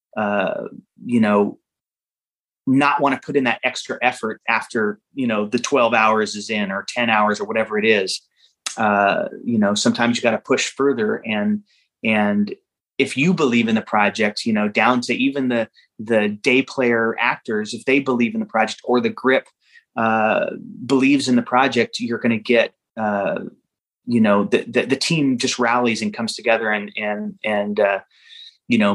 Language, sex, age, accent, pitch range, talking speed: English, male, 30-49, American, 115-145 Hz, 185 wpm